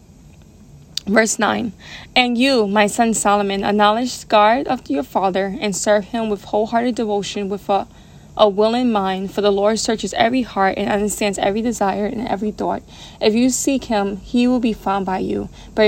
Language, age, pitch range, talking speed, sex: English, 20-39, 200-235 Hz, 180 wpm, female